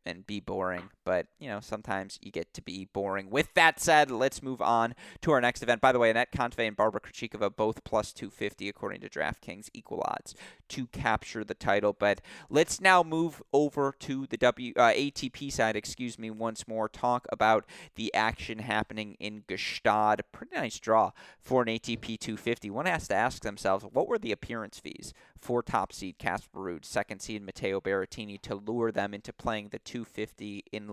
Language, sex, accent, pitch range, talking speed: English, male, American, 105-120 Hz, 190 wpm